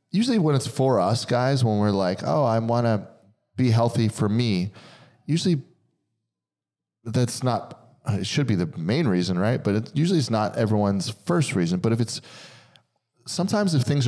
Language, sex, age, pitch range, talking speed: English, male, 30-49, 105-135 Hz, 170 wpm